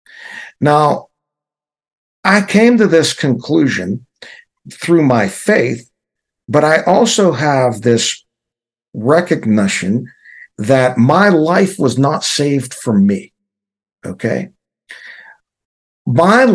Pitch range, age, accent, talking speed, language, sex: 130-195 Hz, 60-79, American, 90 wpm, English, male